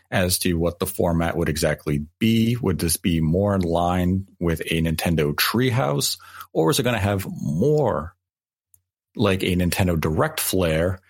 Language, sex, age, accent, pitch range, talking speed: English, male, 40-59, American, 85-105 Hz, 160 wpm